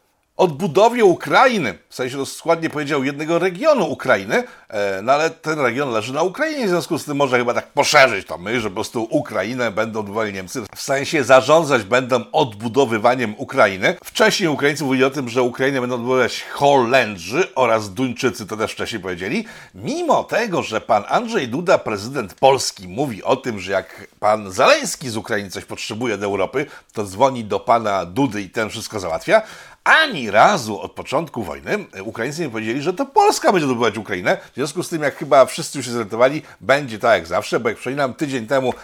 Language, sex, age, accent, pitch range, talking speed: Polish, male, 50-69, native, 110-145 Hz, 180 wpm